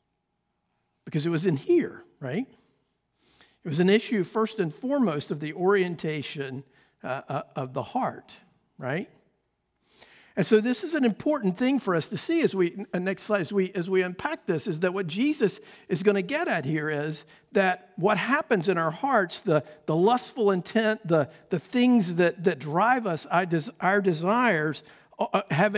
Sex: male